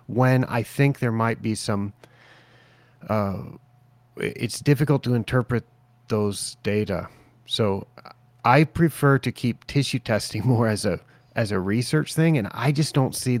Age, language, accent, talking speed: 30-49, English, American, 150 wpm